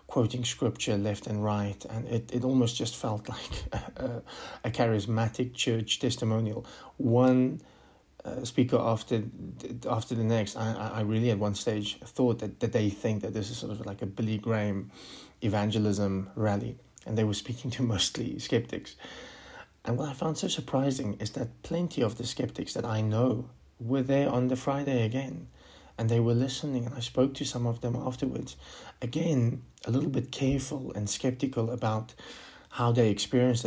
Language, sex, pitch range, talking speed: English, male, 110-135 Hz, 175 wpm